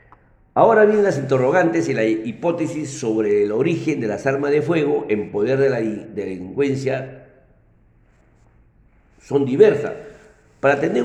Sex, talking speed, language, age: male, 130 wpm, Spanish, 50-69